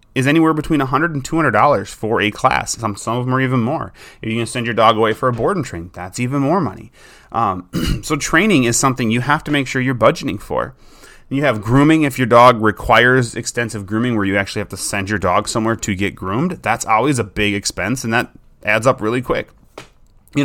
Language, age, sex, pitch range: English, 30-49, male, 110-145 Hz